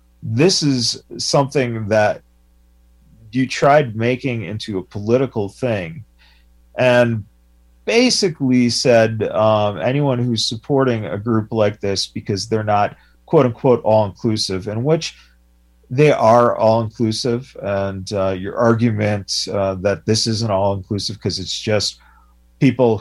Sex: male